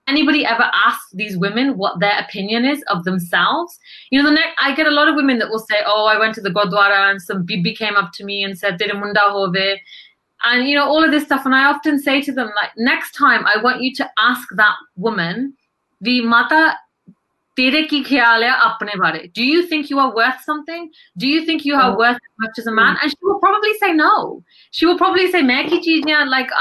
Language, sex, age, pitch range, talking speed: English, female, 30-49, 205-295 Hz, 205 wpm